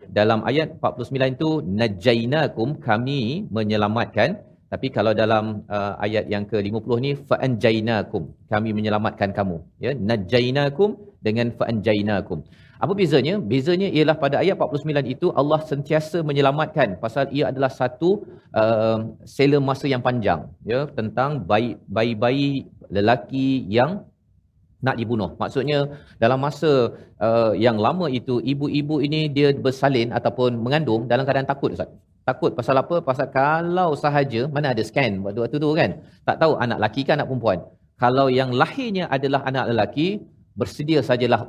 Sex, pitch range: male, 110-140 Hz